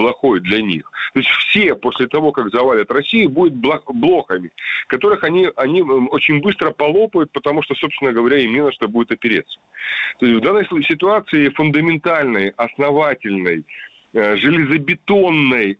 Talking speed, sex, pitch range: 135 wpm, male, 105-150 Hz